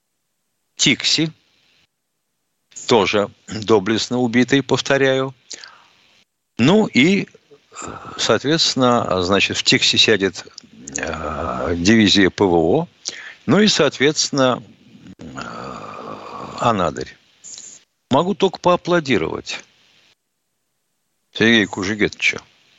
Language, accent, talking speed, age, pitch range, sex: Russian, native, 65 wpm, 60-79, 120-185 Hz, male